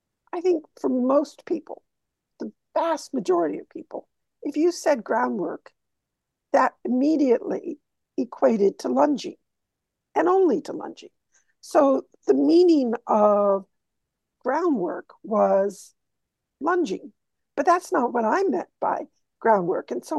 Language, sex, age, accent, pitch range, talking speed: English, female, 60-79, American, 215-340 Hz, 120 wpm